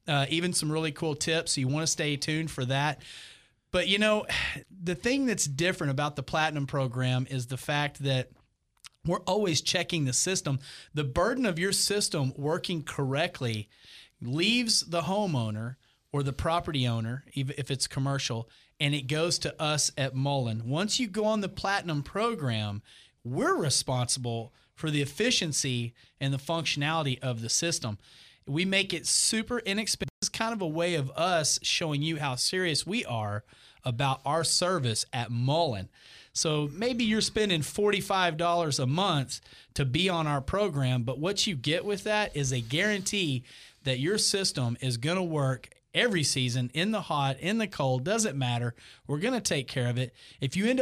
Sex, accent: male, American